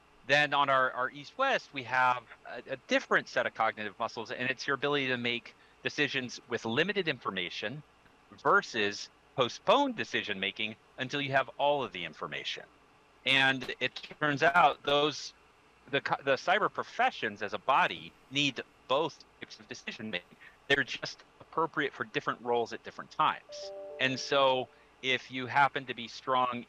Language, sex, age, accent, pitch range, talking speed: English, male, 40-59, American, 110-140 Hz, 155 wpm